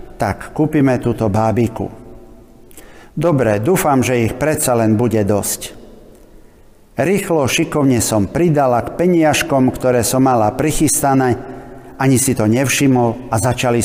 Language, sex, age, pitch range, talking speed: Slovak, male, 50-69, 115-135 Hz, 120 wpm